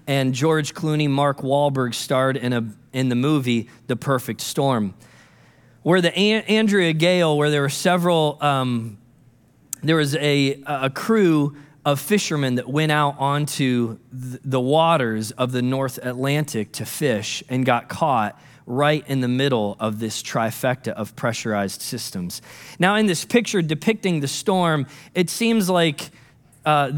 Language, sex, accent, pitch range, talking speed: English, male, American, 130-175 Hz, 150 wpm